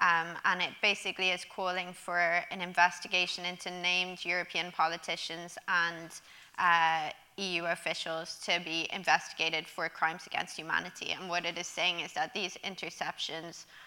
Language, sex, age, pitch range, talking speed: English, female, 20-39, 170-185 Hz, 145 wpm